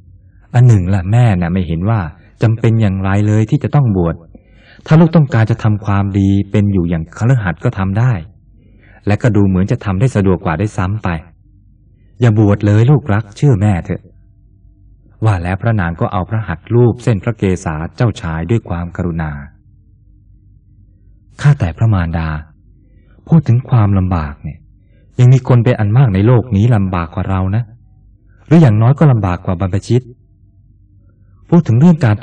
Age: 20-39